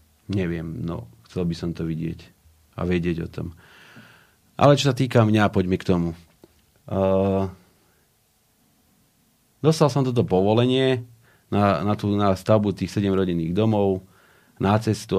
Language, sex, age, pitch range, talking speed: Slovak, male, 40-59, 90-105 Hz, 130 wpm